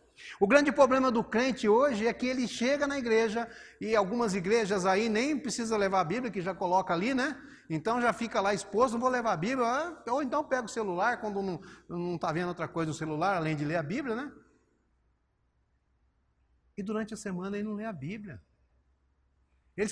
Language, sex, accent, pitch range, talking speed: Portuguese, male, Brazilian, 155-250 Hz, 200 wpm